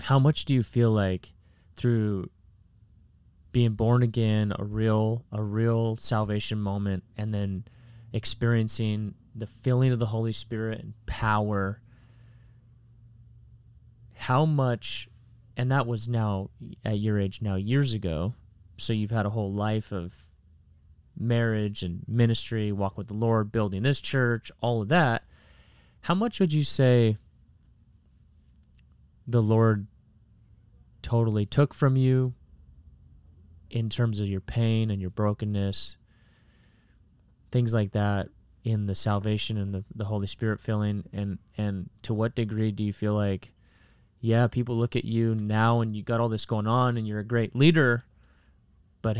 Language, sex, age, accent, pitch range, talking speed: English, male, 30-49, American, 100-115 Hz, 145 wpm